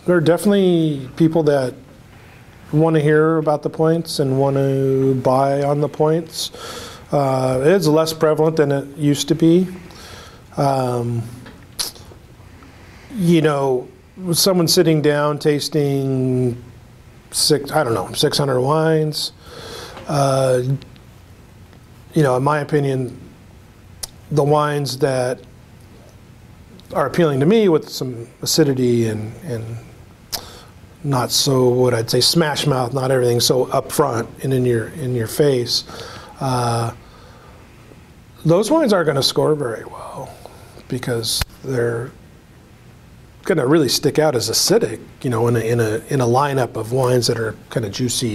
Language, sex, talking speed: English, male, 135 wpm